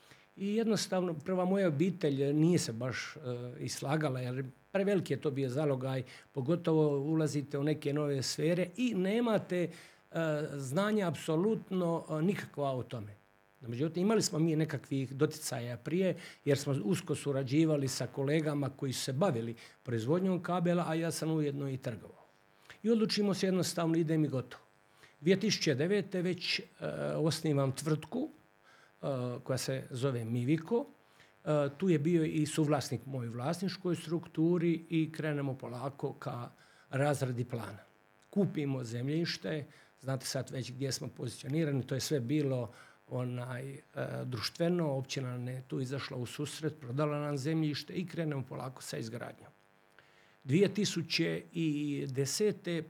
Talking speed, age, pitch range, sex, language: 130 wpm, 50-69, 130-165 Hz, male, Croatian